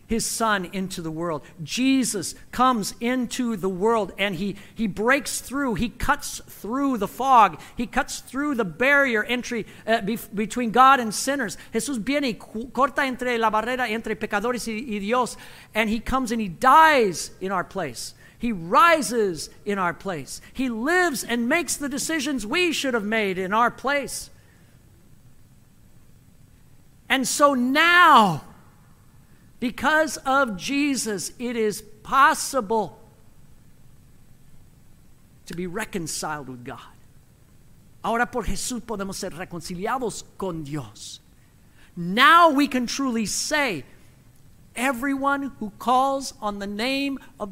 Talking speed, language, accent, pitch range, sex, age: 130 wpm, English, American, 205-280 Hz, male, 50-69